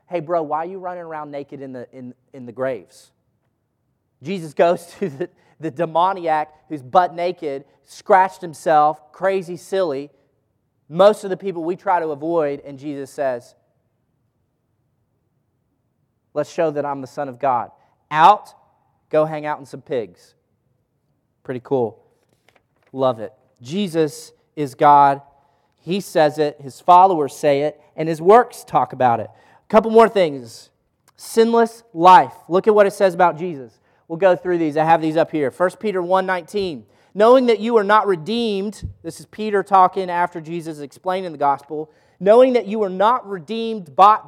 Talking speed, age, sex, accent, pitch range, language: 160 wpm, 30-49, male, American, 145-195 Hz, English